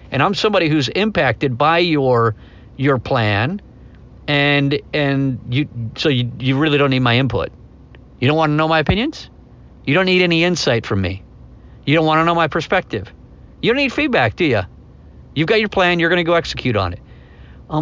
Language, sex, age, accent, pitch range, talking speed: English, male, 50-69, American, 125-165 Hz, 200 wpm